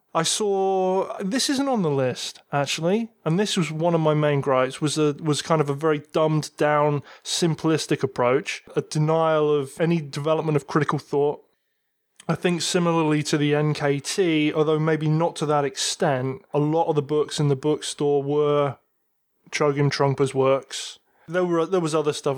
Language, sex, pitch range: English, male, 140-165 Hz